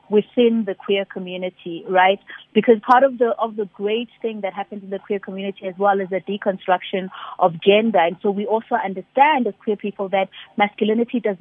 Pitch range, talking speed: 190-210 Hz, 195 wpm